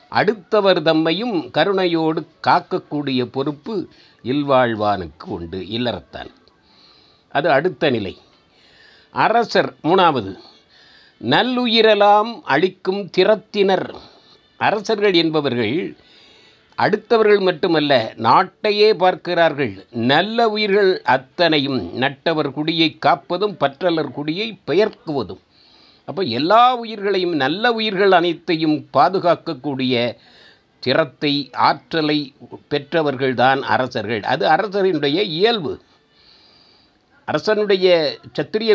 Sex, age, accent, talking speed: male, 50-69, native, 75 wpm